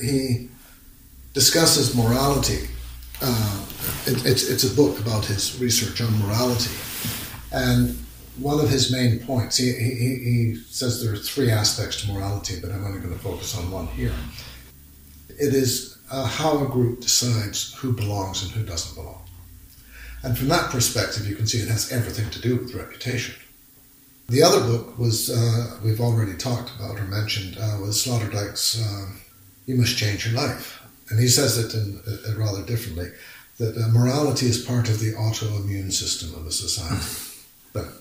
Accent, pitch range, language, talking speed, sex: American, 105-130 Hz, English, 170 wpm, male